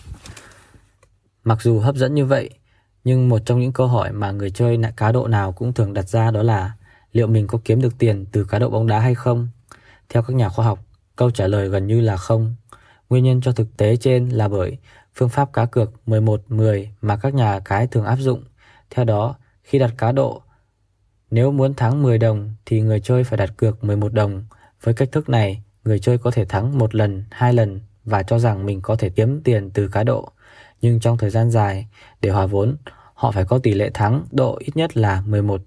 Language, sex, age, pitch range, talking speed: Vietnamese, male, 20-39, 105-120 Hz, 220 wpm